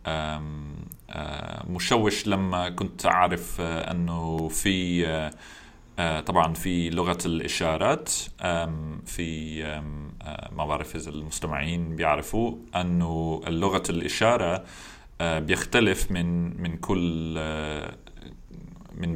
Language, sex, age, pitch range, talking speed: Arabic, male, 30-49, 80-90 Hz, 70 wpm